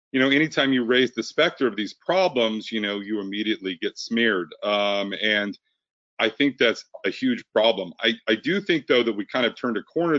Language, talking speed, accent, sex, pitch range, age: English, 210 wpm, American, male, 100-125 Hz, 40-59